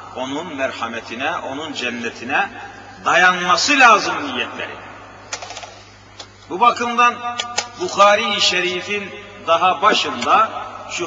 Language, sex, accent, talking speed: Turkish, male, native, 75 wpm